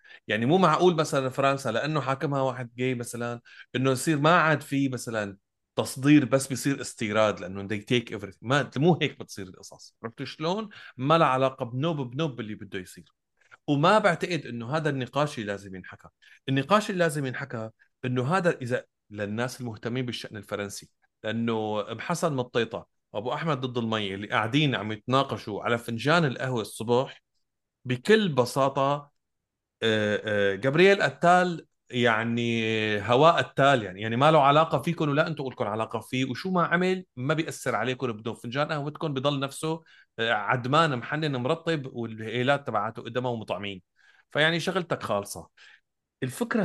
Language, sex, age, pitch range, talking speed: Arabic, male, 30-49, 110-155 Hz, 150 wpm